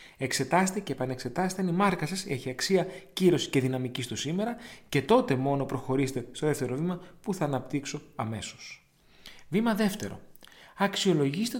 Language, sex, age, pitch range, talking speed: Greek, male, 30-49, 130-185 Hz, 145 wpm